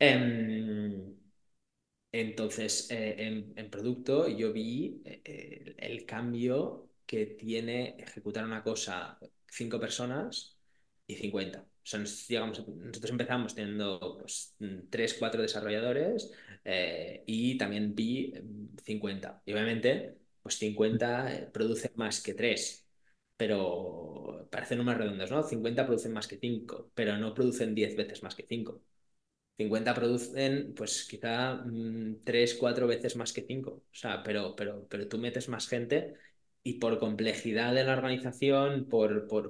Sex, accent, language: male, Spanish, Spanish